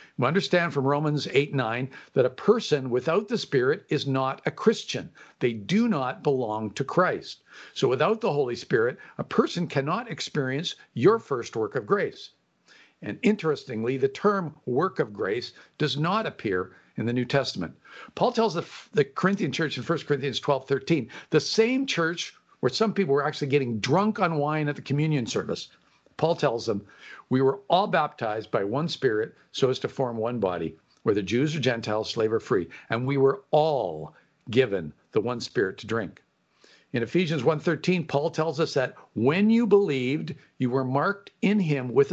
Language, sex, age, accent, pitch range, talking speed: English, male, 50-69, American, 130-180 Hz, 180 wpm